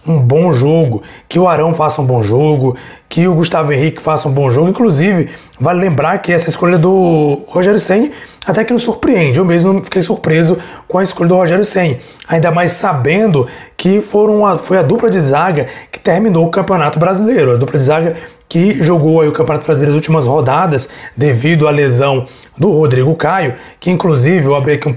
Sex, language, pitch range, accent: male, Portuguese, 150-185 Hz, Brazilian